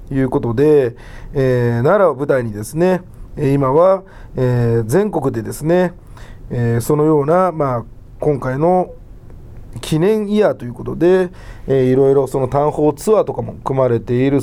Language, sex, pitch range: Japanese, male, 115-165 Hz